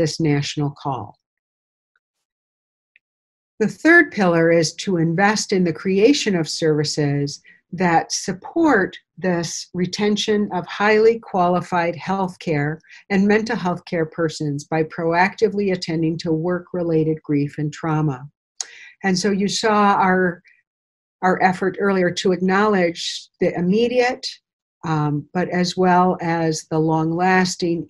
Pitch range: 155-190 Hz